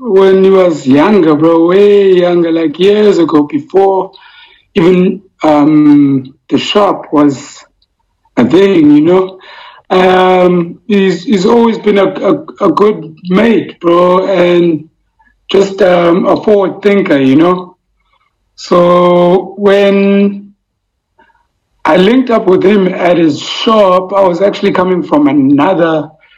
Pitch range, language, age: 155-195 Hz, English, 60-79